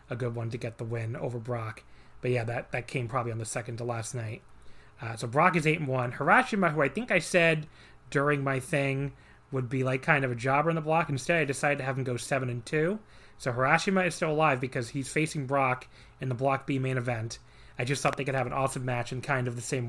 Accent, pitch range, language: American, 120-140 Hz, English